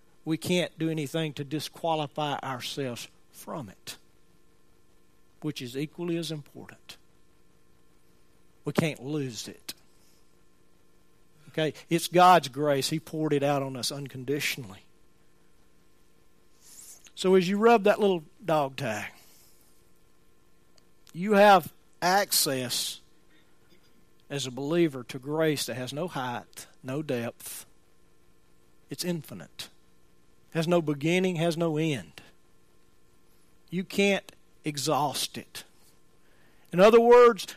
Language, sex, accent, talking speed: English, male, American, 105 wpm